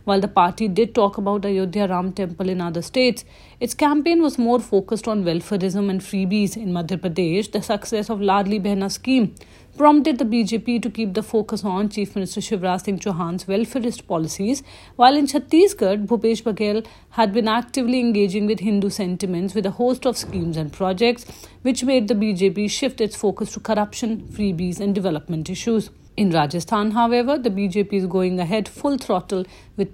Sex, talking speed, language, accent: female, 175 wpm, English, Indian